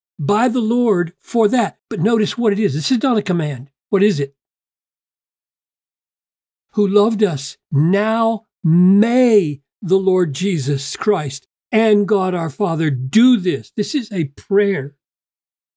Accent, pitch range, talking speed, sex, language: American, 170-235 Hz, 140 wpm, male, English